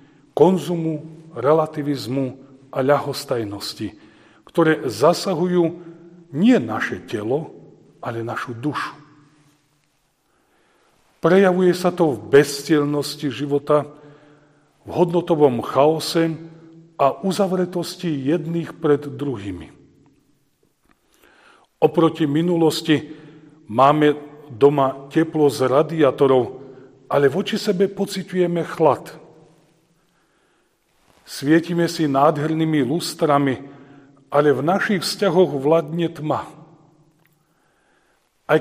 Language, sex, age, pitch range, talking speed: Slovak, male, 40-59, 140-170 Hz, 75 wpm